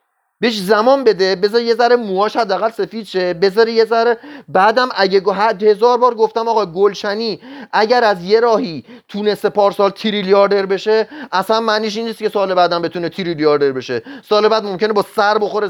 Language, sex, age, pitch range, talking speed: Persian, male, 30-49, 190-220 Hz, 170 wpm